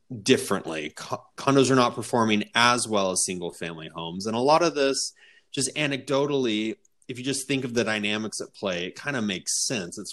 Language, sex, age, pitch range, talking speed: English, male, 30-49, 110-140 Hz, 195 wpm